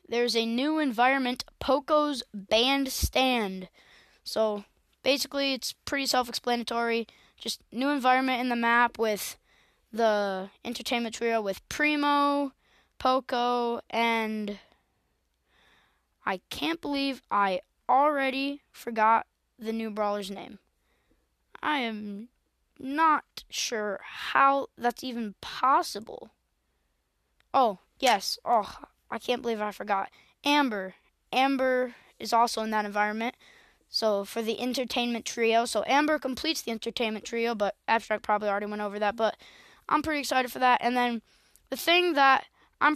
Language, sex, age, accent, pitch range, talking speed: English, female, 20-39, American, 225-275 Hz, 125 wpm